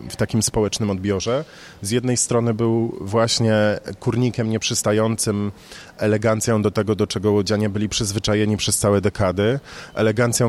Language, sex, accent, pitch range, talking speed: Polish, male, native, 105-130 Hz, 130 wpm